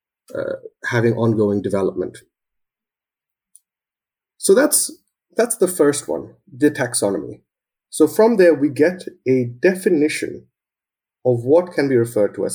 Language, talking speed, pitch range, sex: English, 125 wpm, 125-185 Hz, male